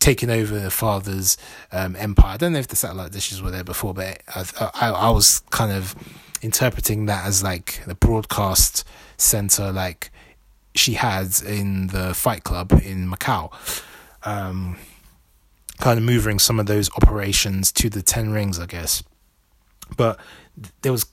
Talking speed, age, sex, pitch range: 160 wpm, 20-39, male, 95-120 Hz